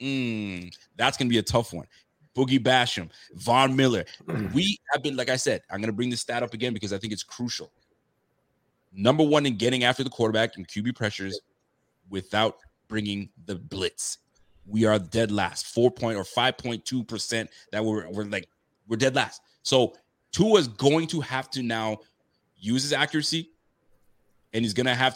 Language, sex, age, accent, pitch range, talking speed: English, male, 30-49, American, 105-130 Hz, 180 wpm